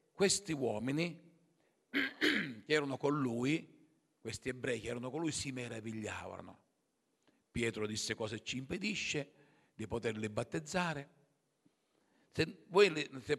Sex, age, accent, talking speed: male, 50-69, native, 105 wpm